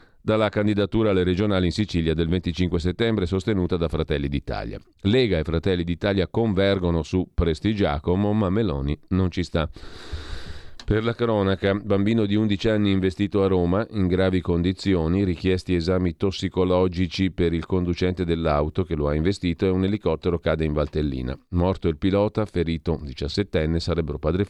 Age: 40-59